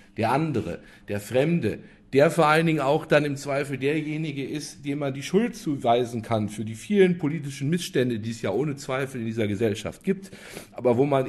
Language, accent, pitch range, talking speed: German, German, 115-160 Hz, 195 wpm